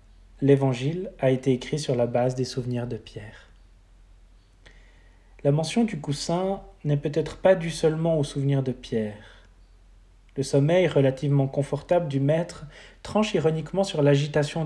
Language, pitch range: French, 100-155 Hz